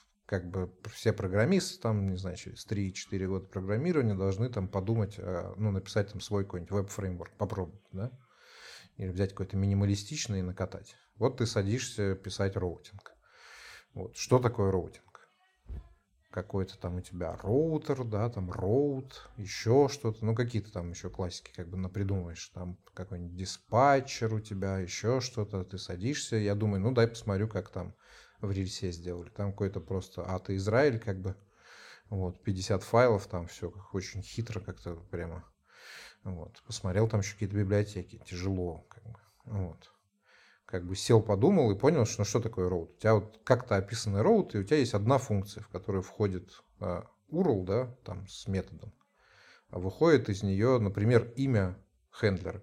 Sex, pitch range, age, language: male, 95-110 Hz, 30-49, Russian